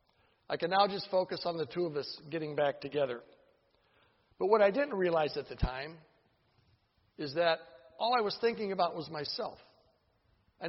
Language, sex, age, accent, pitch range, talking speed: English, male, 60-79, American, 155-210 Hz, 175 wpm